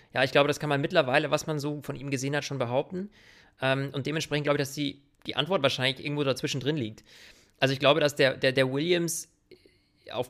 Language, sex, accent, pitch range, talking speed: German, male, German, 125-145 Hz, 225 wpm